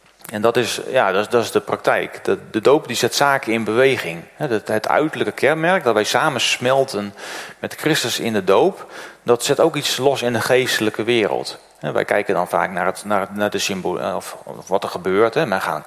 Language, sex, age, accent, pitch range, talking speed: Dutch, male, 40-59, Dutch, 105-130 Hz, 225 wpm